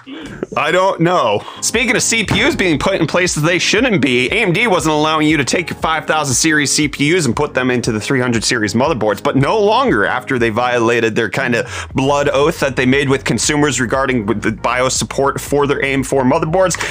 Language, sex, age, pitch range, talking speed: English, male, 30-49, 110-145 Hz, 195 wpm